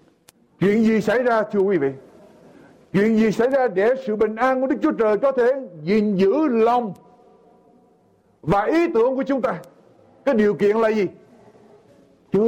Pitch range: 160-240 Hz